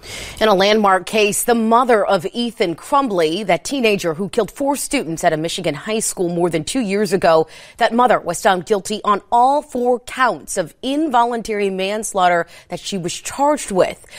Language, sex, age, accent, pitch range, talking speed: English, female, 30-49, American, 175-240 Hz, 180 wpm